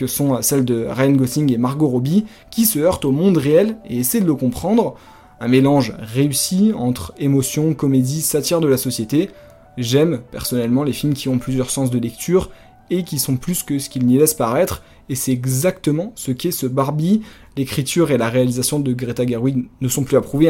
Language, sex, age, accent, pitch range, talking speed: French, male, 20-39, French, 130-160 Hz, 200 wpm